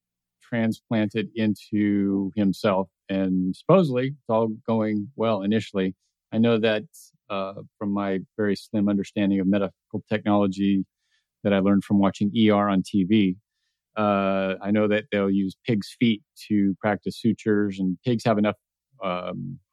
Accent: American